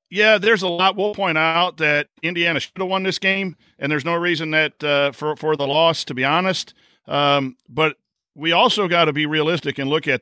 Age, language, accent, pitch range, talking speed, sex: 50-69, English, American, 135-165 Hz, 225 wpm, male